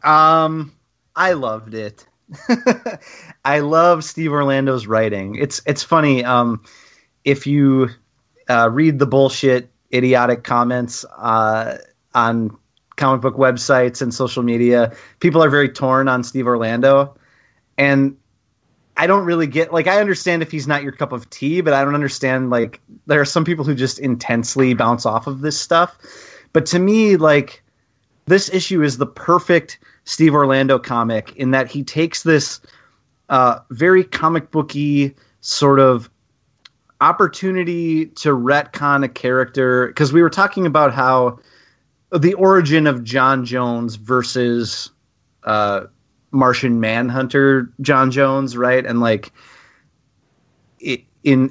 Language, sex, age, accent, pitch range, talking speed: English, male, 30-49, American, 120-145 Hz, 135 wpm